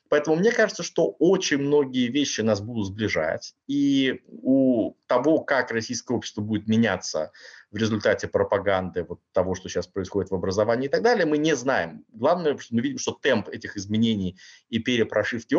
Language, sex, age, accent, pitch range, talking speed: Russian, male, 30-49, native, 95-150 Hz, 165 wpm